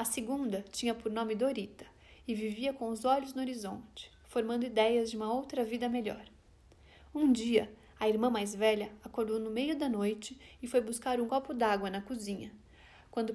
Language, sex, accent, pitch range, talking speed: Portuguese, female, Brazilian, 215-260 Hz, 180 wpm